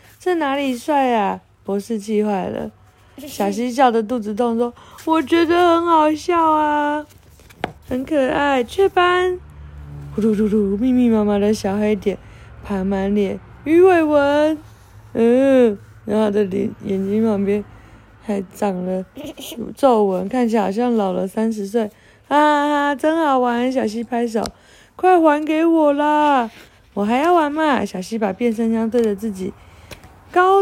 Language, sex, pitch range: Chinese, female, 200-285 Hz